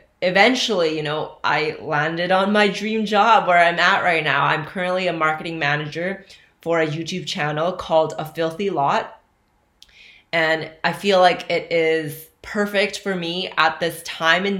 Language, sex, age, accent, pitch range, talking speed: English, female, 20-39, American, 155-200 Hz, 165 wpm